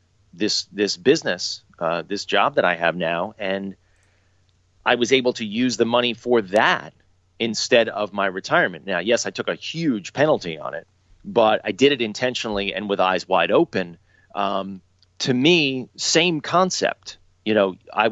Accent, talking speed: American, 170 wpm